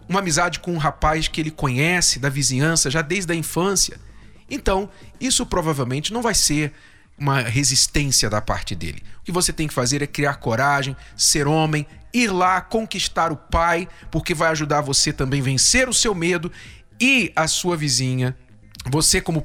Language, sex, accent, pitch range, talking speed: Portuguese, male, Brazilian, 120-170 Hz, 175 wpm